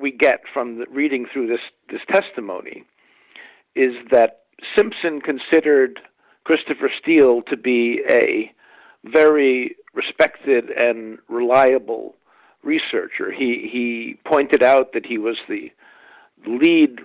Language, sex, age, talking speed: English, male, 50-69, 115 wpm